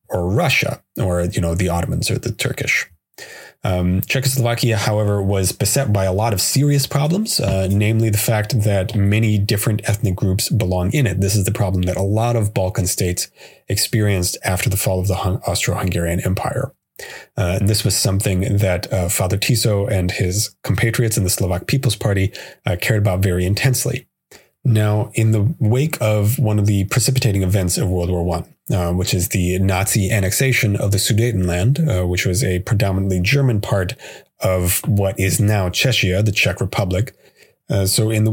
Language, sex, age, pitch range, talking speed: English, male, 30-49, 95-120 Hz, 180 wpm